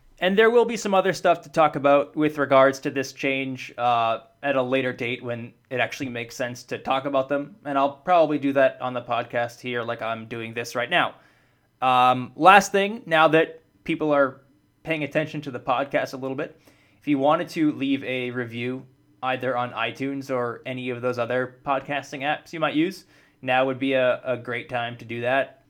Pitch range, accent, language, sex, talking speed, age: 125-155 Hz, American, English, male, 210 wpm, 20-39